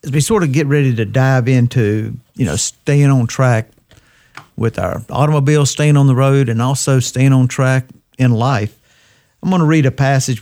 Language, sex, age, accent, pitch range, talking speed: English, male, 50-69, American, 120-140 Hz, 195 wpm